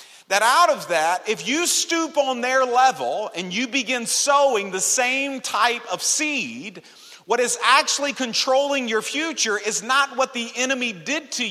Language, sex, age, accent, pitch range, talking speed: English, male, 40-59, American, 240-300 Hz, 165 wpm